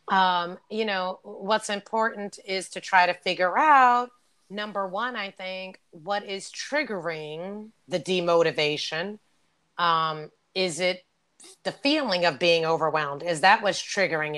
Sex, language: female, English